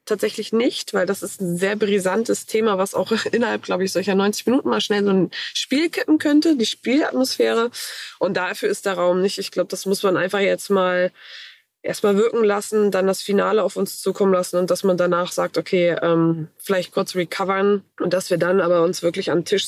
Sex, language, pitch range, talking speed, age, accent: female, German, 180-210 Hz, 215 wpm, 20-39, German